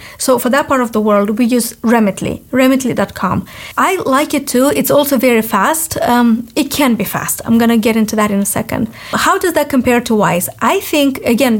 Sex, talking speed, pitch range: female, 215 wpm, 220-260 Hz